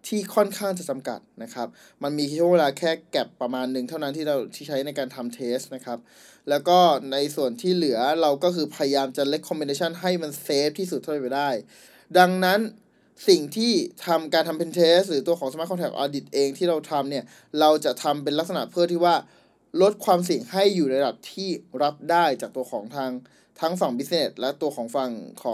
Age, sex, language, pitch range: 20-39, male, Thai, 140-180 Hz